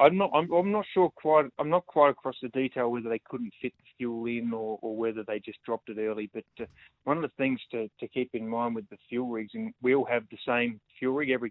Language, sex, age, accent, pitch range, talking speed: English, male, 20-39, Australian, 110-130 Hz, 270 wpm